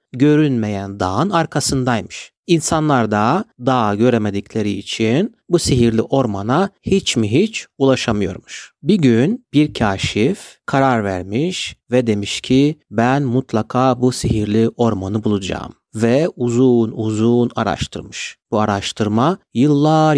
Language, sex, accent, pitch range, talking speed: Turkish, male, native, 110-145 Hz, 110 wpm